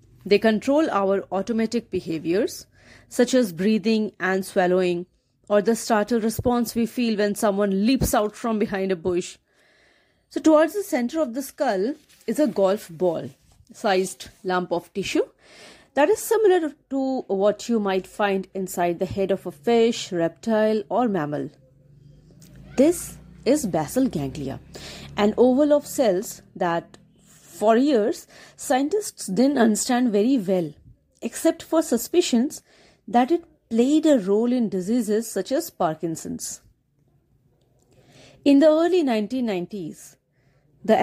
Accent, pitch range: Indian, 185-245 Hz